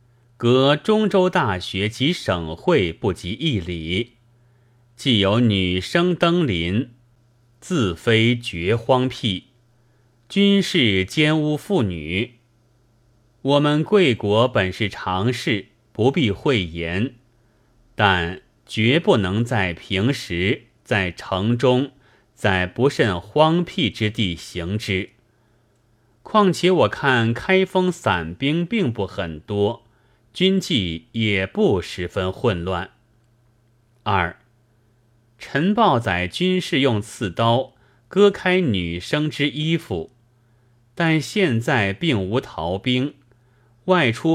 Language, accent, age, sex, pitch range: Chinese, native, 30-49, male, 105-135 Hz